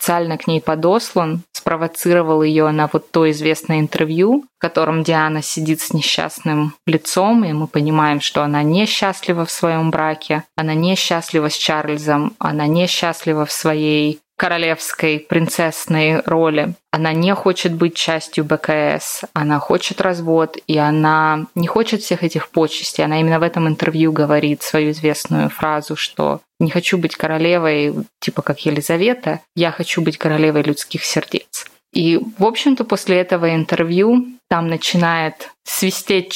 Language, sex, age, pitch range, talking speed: Russian, female, 20-39, 155-180 Hz, 140 wpm